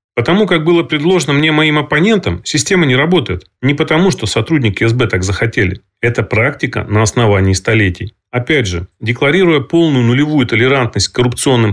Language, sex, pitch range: Russian, male, 110-145 Hz